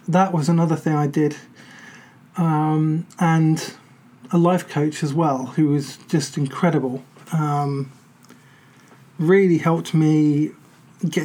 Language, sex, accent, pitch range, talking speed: English, male, British, 145-170 Hz, 115 wpm